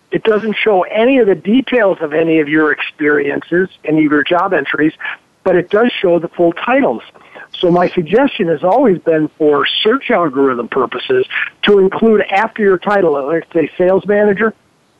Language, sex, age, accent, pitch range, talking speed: English, male, 60-79, American, 165-210 Hz, 170 wpm